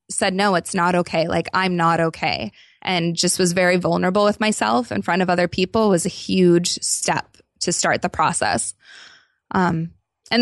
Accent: American